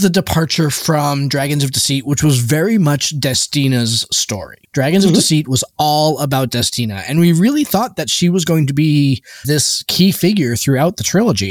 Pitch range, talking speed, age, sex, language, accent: 125-165 Hz, 180 wpm, 20-39, male, English, American